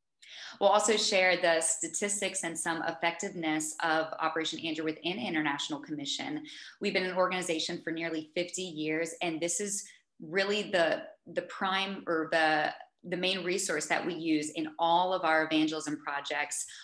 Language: English